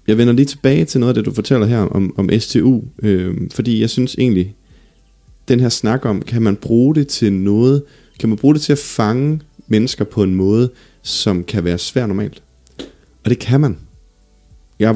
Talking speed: 195 wpm